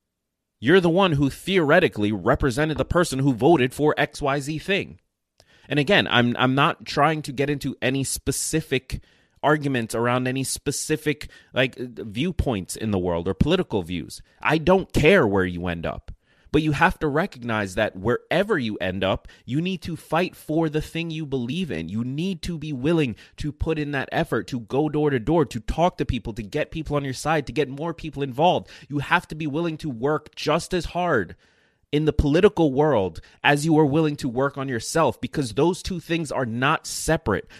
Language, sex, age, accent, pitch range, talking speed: English, male, 30-49, American, 125-160 Hz, 195 wpm